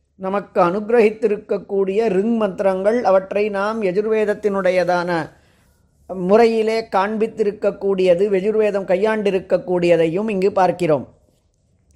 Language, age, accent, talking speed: Tamil, 30-49, native, 65 wpm